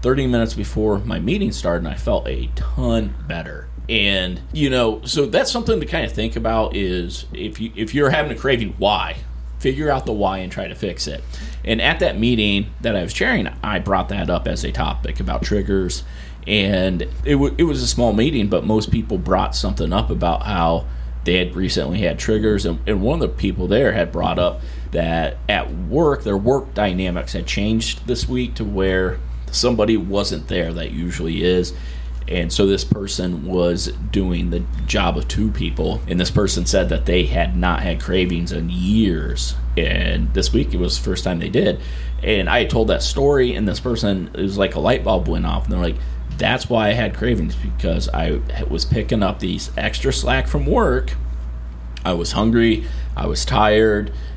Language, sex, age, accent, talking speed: English, male, 30-49, American, 200 wpm